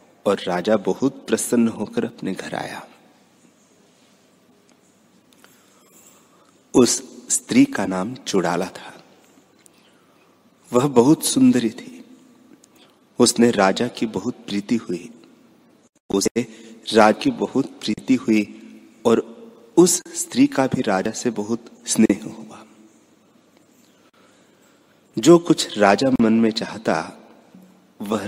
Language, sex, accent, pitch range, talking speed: Hindi, male, native, 105-145 Hz, 100 wpm